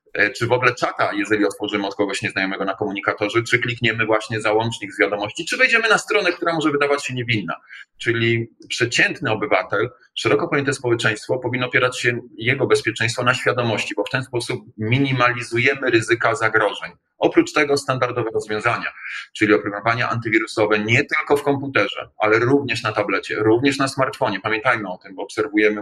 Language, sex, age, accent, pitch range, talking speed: Polish, male, 30-49, native, 105-130 Hz, 160 wpm